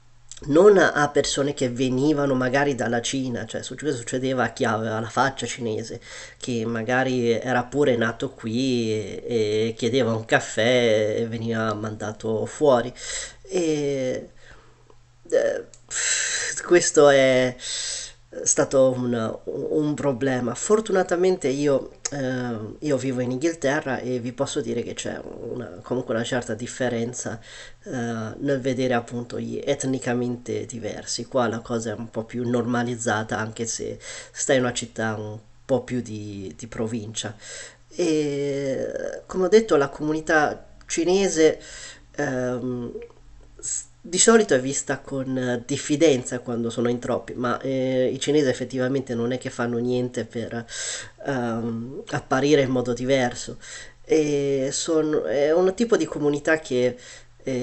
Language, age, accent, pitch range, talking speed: Italian, 30-49, native, 115-140 Hz, 130 wpm